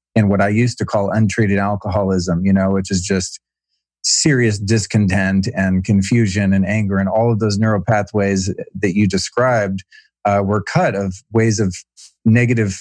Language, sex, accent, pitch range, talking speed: English, male, American, 100-120 Hz, 165 wpm